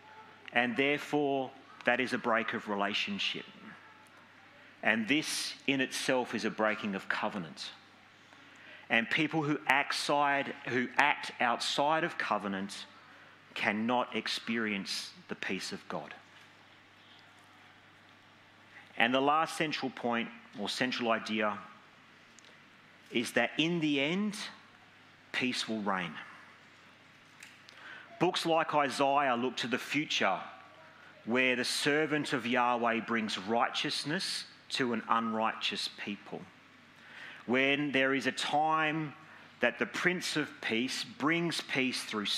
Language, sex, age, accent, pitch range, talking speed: English, male, 40-59, Australian, 110-145 Hz, 110 wpm